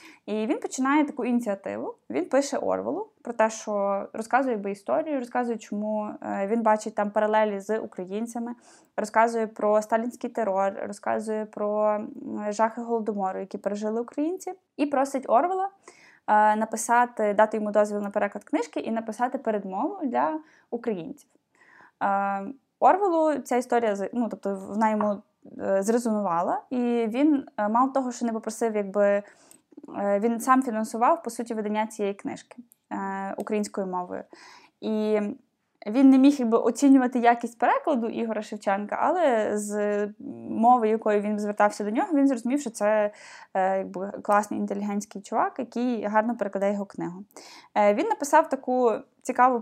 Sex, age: female, 20-39